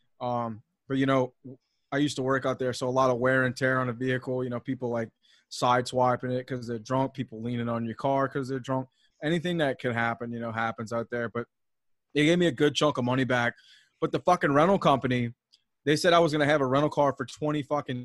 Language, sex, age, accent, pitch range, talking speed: English, male, 20-39, American, 120-145 Hz, 245 wpm